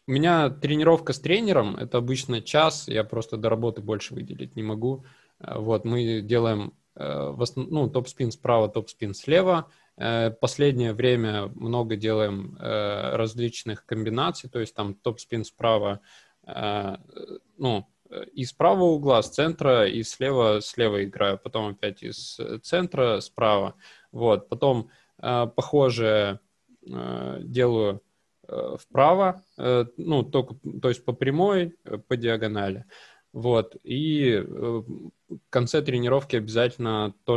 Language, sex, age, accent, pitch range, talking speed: Russian, male, 20-39, native, 110-135 Hz, 125 wpm